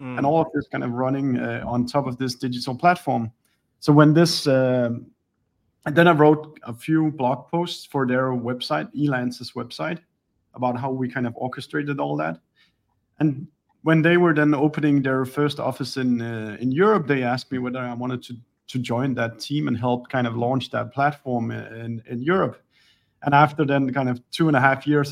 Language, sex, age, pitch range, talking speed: English, male, 30-49, 125-150 Hz, 200 wpm